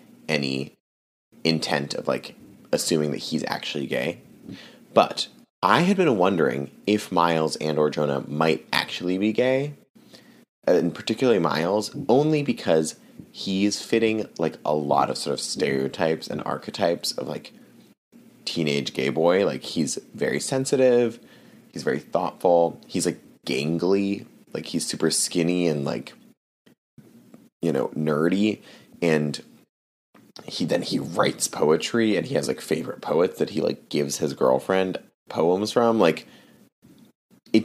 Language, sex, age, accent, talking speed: English, male, 30-49, American, 135 wpm